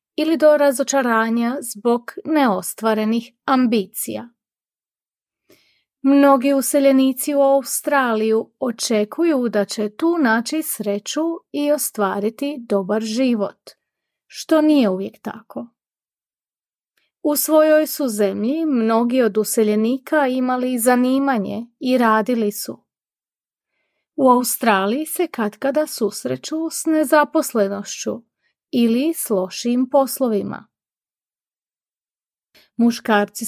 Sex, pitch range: female, 220-285 Hz